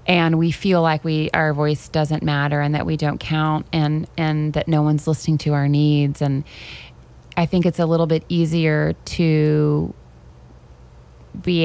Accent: American